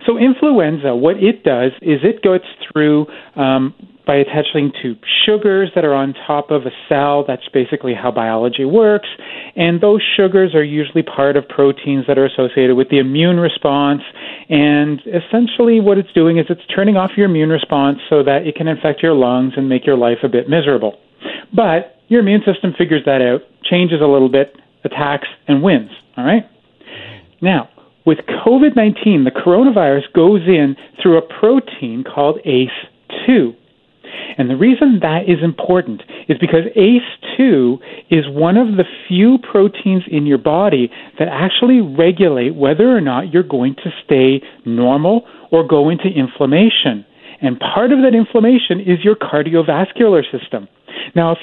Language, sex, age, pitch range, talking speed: English, male, 40-59, 145-210 Hz, 160 wpm